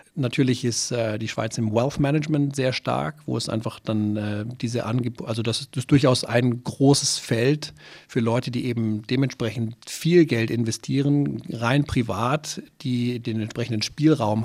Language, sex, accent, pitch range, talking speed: German, male, German, 110-135 Hz, 160 wpm